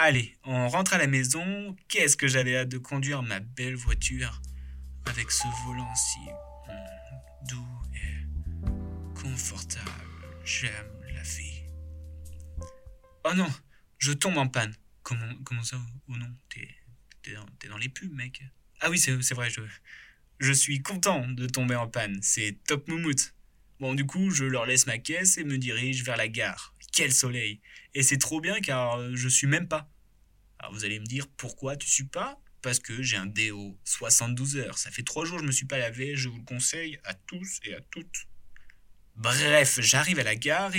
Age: 20-39